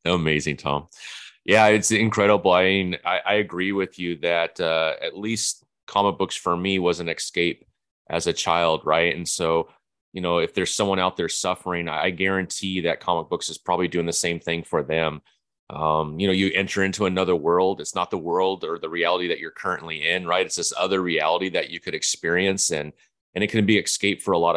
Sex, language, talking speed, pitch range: male, English, 210 wpm, 85-100 Hz